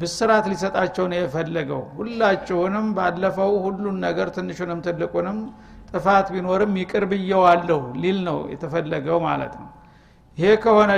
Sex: male